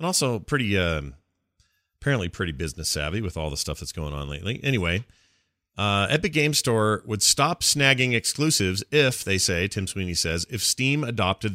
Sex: male